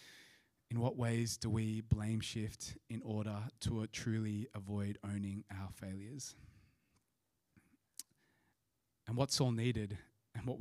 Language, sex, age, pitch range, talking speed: English, male, 20-39, 110-135 Hz, 120 wpm